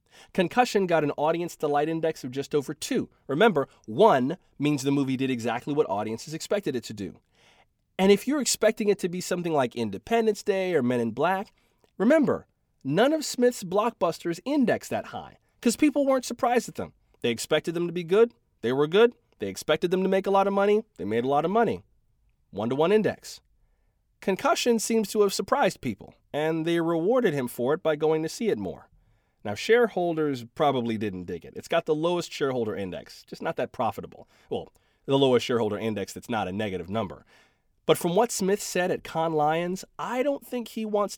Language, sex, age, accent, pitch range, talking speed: English, male, 30-49, American, 135-210 Hz, 195 wpm